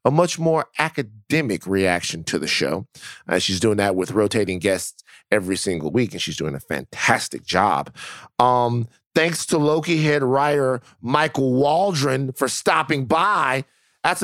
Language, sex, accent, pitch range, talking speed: English, male, American, 110-150 Hz, 155 wpm